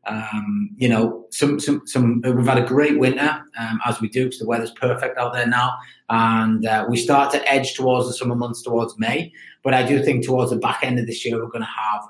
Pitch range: 110-130 Hz